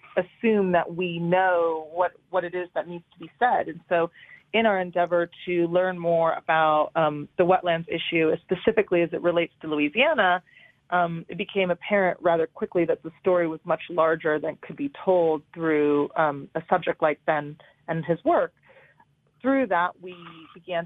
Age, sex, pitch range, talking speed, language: 30-49, female, 160-185 Hz, 175 wpm, English